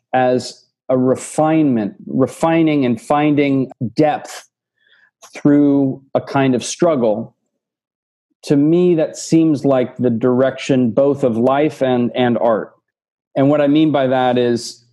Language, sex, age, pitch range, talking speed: English, male, 40-59, 125-165 Hz, 130 wpm